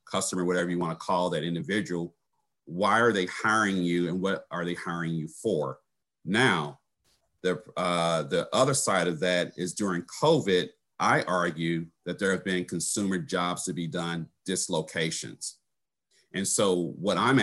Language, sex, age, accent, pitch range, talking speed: English, male, 50-69, American, 85-100 Hz, 160 wpm